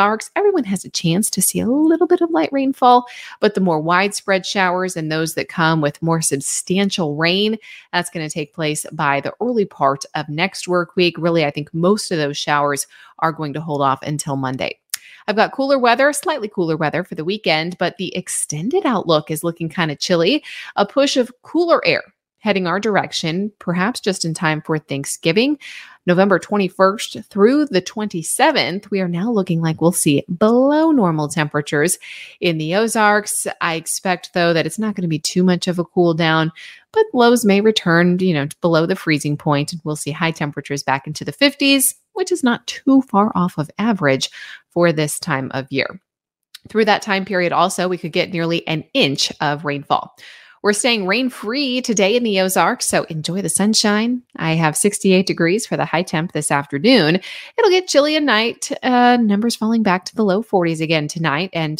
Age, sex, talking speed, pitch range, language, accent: 30-49, female, 195 wpm, 160-220 Hz, English, American